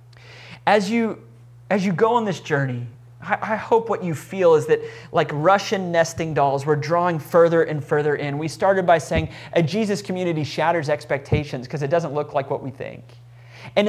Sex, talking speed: male, 185 wpm